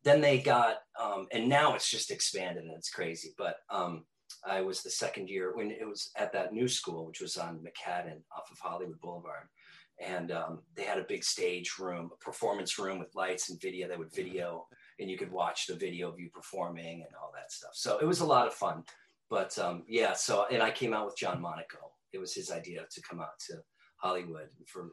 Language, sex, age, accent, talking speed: English, male, 40-59, American, 225 wpm